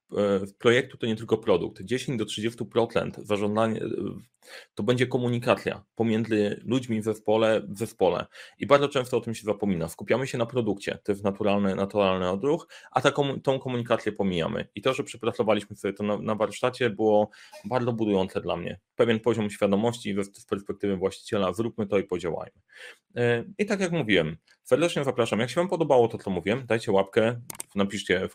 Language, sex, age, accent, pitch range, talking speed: Polish, male, 30-49, native, 100-125 Hz, 165 wpm